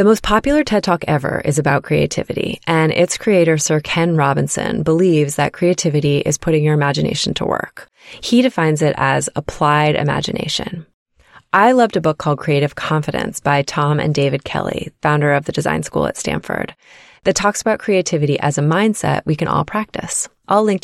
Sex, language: female, English